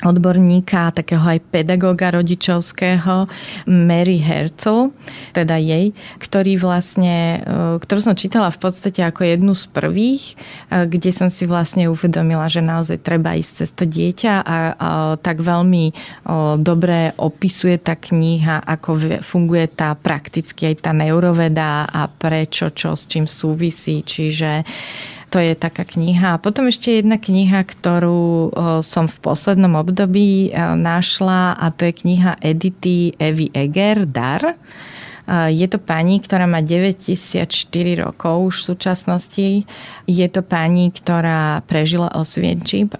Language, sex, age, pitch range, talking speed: Slovak, female, 30-49, 165-185 Hz, 130 wpm